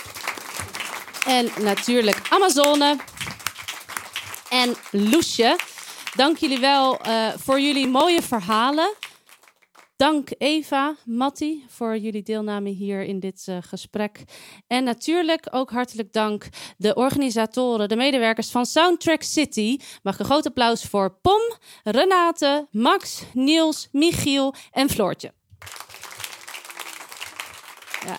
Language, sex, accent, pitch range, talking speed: Dutch, female, Dutch, 210-275 Hz, 105 wpm